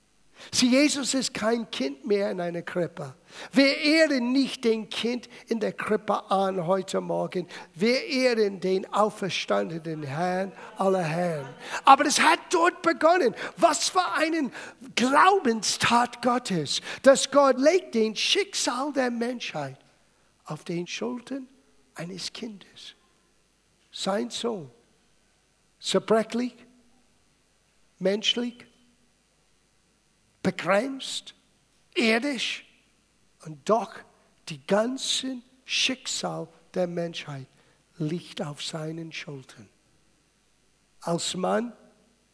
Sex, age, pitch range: male, 60-79, 165-245 Hz